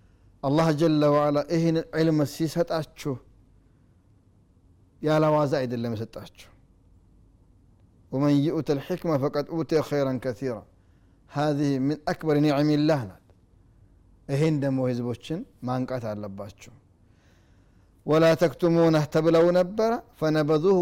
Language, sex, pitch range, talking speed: Amharic, male, 115-150 Hz, 95 wpm